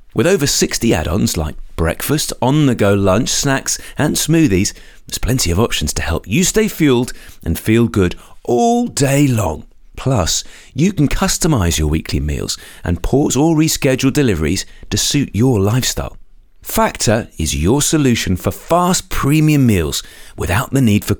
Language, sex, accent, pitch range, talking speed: English, male, British, 95-150 Hz, 155 wpm